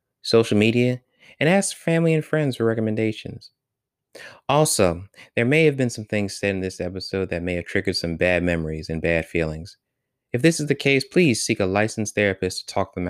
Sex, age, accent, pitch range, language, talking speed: male, 20-39, American, 105-150 Hz, English, 195 wpm